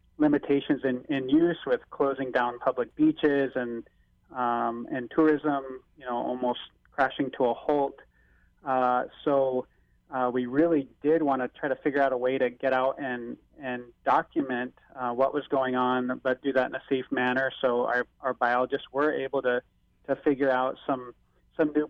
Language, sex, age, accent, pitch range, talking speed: English, male, 30-49, American, 125-140 Hz, 180 wpm